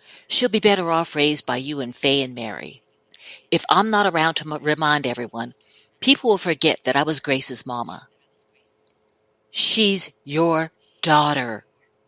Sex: female